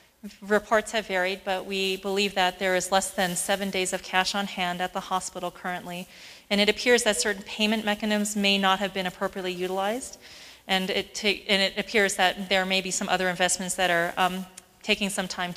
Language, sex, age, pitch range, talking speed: English, female, 30-49, 180-205 Hz, 205 wpm